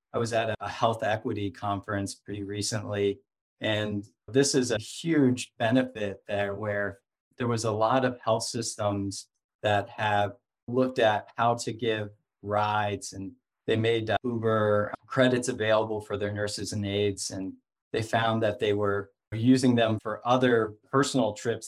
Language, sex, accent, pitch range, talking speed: English, male, American, 100-120 Hz, 150 wpm